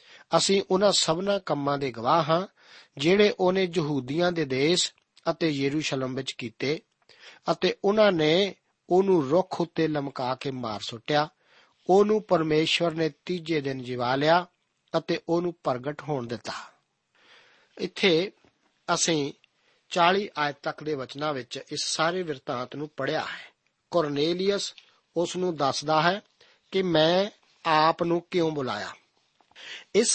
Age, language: 50-69, Punjabi